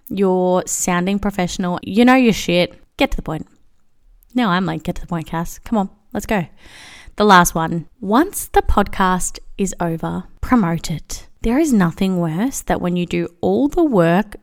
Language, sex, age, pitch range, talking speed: English, female, 20-39, 175-220 Hz, 185 wpm